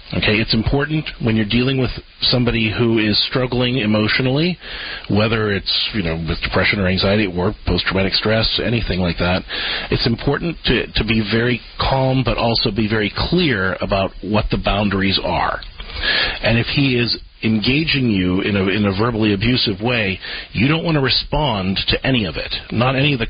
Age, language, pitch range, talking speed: 40-59, English, 100-130 Hz, 180 wpm